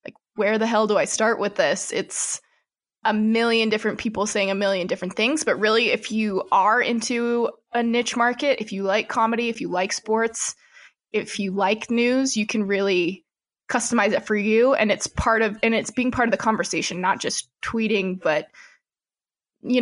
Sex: female